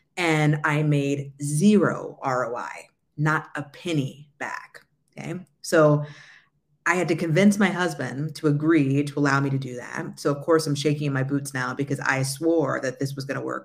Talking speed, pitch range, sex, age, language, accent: 185 wpm, 140-160 Hz, female, 40-59, English, American